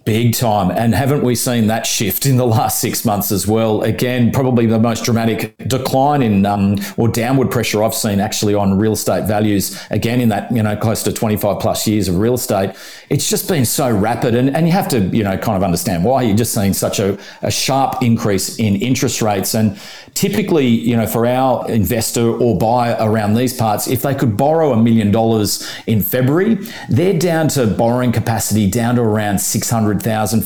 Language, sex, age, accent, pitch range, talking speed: English, male, 40-59, Australian, 110-125 Hz, 205 wpm